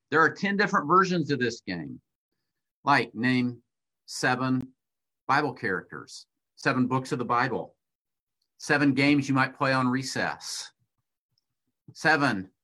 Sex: male